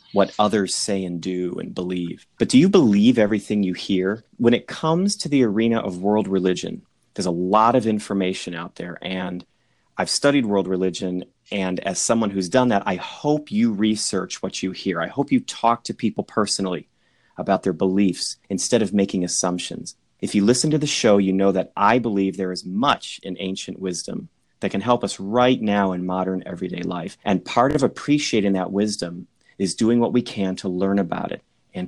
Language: English